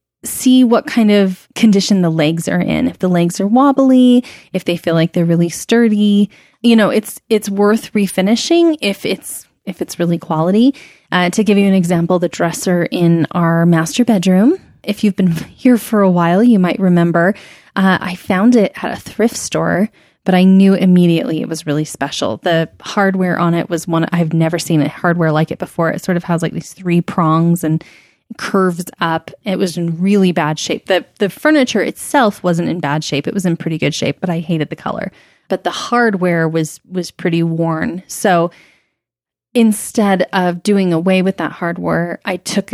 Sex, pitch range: female, 170-205 Hz